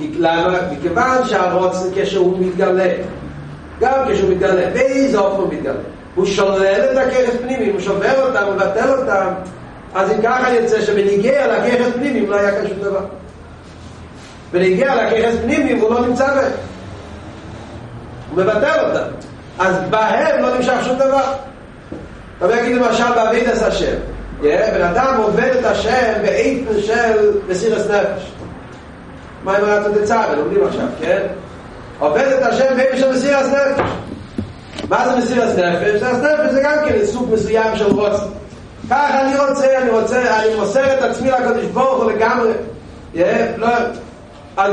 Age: 40-59